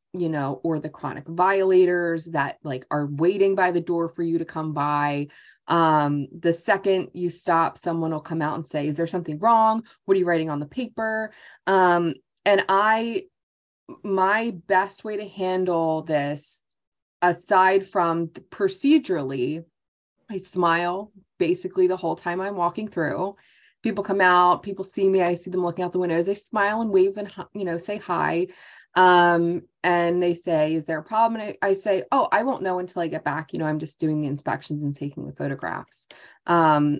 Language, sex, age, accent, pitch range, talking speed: English, female, 20-39, American, 155-190 Hz, 185 wpm